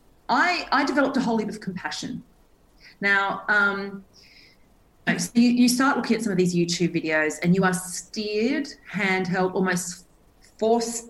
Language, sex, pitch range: English, female, 170-225 Hz